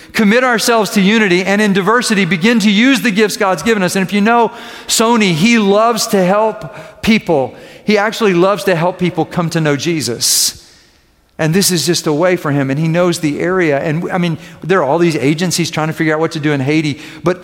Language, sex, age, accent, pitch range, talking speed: English, male, 50-69, American, 180-235 Hz, 225 wpm